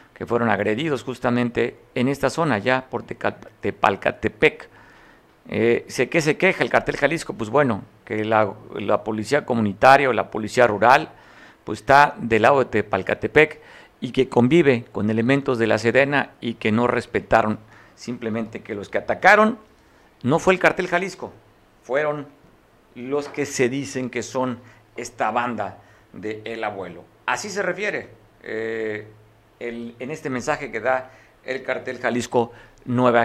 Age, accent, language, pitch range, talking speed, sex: 50-69, Mexican, Spanish, 110-145 Hz, 150 wpm, male